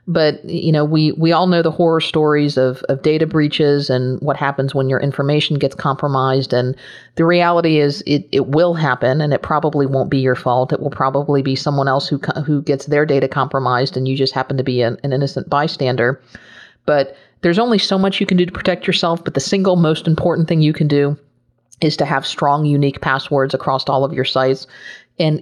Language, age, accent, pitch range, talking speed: English, 40-59, American, 140-165 Hz, 215 wpm